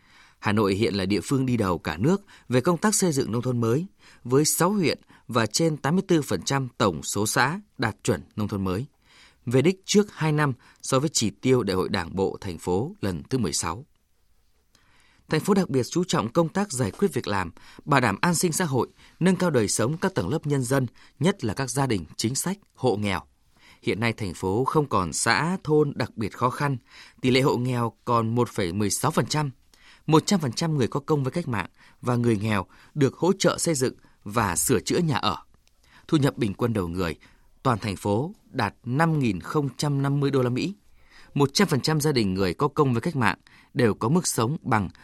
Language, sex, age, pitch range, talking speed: Vietnamese, male, 20-39, 110-160 Hz, 205 wpm